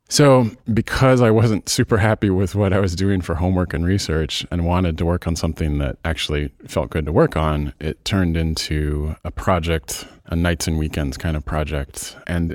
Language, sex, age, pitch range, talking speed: English, male, 30-49, 75-95 Hz, 195 wpm